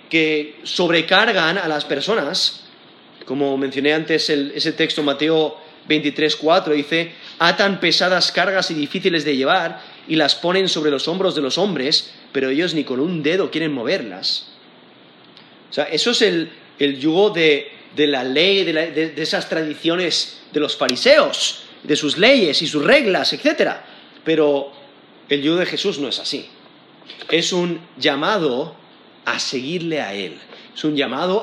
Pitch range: 150-195 Hz